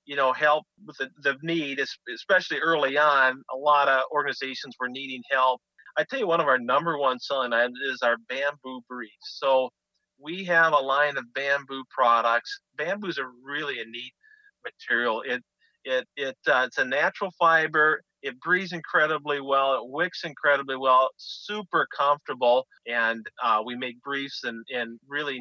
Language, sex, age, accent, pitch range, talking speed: English, male, 40-59, American, 125-150 Hz, 170 wpm